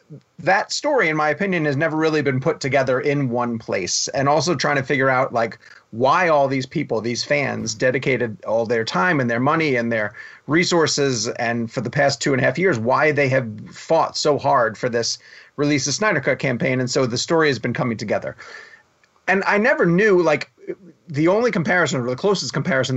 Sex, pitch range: male, 125-155 Hz